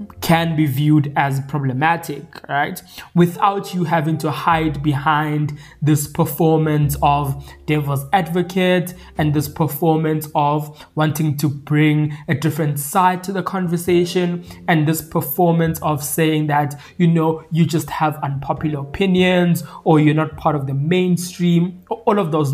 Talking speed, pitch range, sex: 140 wpm, 150-180 Hz, male